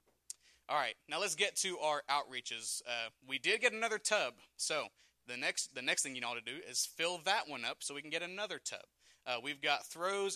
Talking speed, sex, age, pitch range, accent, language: 225 wpm, male, 30-49, 125-160 Hz, American, English